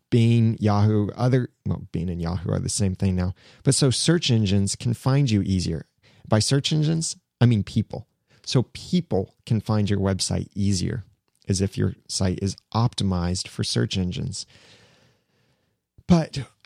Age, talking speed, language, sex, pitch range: 30-49, 155 wpm, English, male, 100-120 Hz